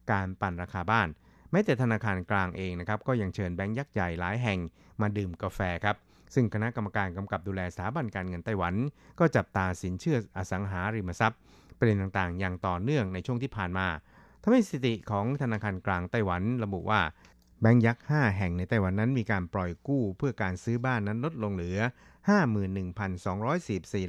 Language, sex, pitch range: Thai, male, 95-115 Hz